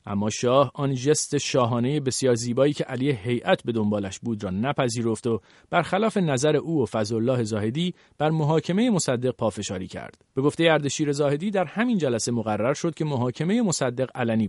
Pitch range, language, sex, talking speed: 120-165 Hz, Persian, male, 170 wpm